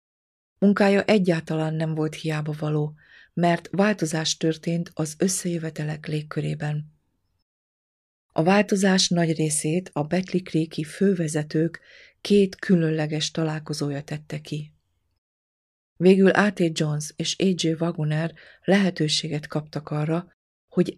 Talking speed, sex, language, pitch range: 95 wpm, female, Hungarian, 150-175 Hz